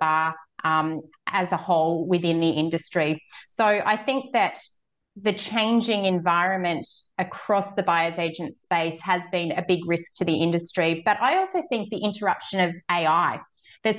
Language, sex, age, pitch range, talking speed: English, female, 30-49, 180-215 Hz, 160 wpm